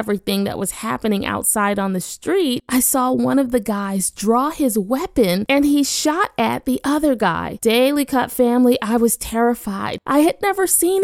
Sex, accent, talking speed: female, American, 185 wpm